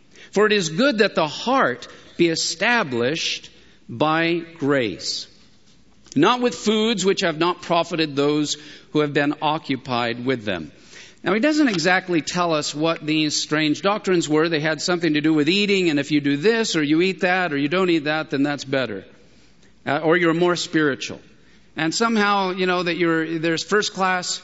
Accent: American